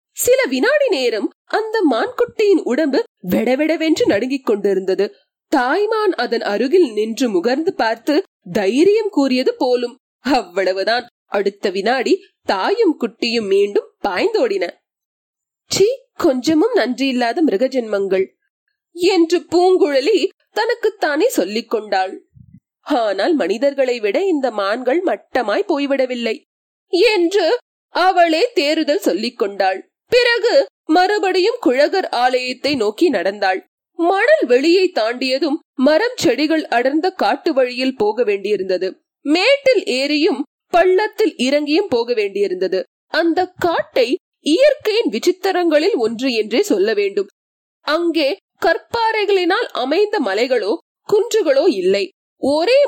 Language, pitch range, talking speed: Tamil, 260-405 Hz, 95 wpm